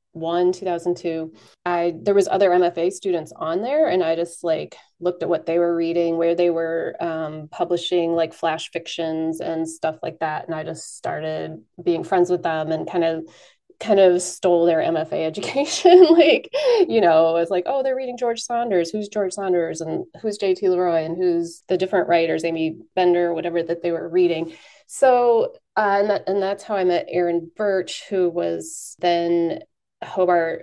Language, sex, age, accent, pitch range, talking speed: English, female, 20-39, American, 165-190 Hz, 180 wpm